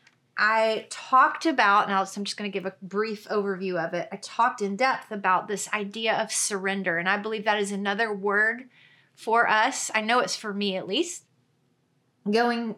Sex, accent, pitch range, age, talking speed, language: female, American, 200-240 Hz, 30-49, 190 wpm, English